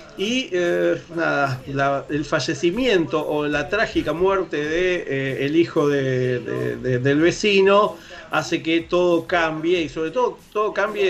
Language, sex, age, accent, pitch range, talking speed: English, male, 40-59, Argentinian, 145-180 Hz, 150 wpm